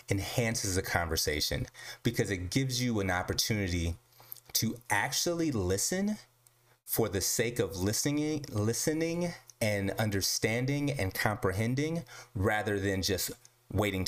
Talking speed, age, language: 110 wpm, 30-49, English